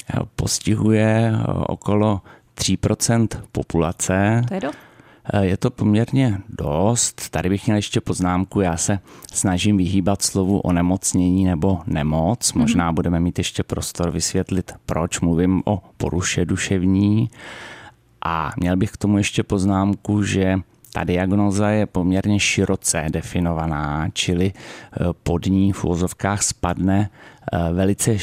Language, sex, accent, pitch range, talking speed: Czech, male, native, 85-100 Hz, 115 wpm